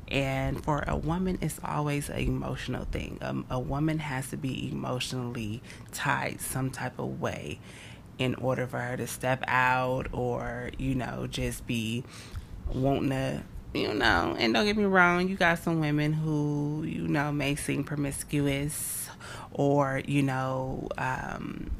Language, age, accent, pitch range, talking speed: English, 20-39, American, 120-140 Hz, 155 wpm